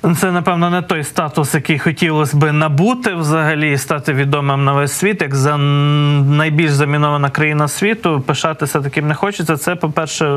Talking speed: 160 wpm